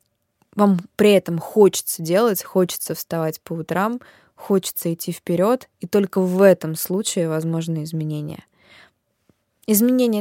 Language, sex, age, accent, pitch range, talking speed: Russian, female, 20-39, native, 175-200 Hz, 120 wpm